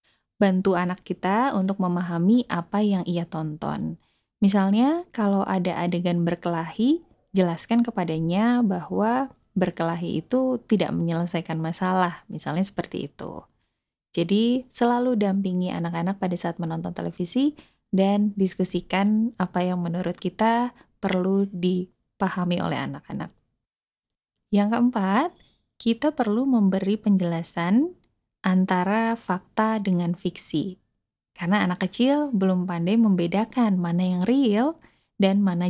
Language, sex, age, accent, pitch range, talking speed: Indonesian, female, 20-39, native, 175-225 Hz, 110 wpm